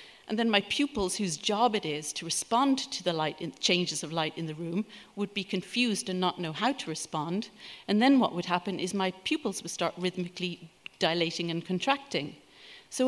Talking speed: 195 wpm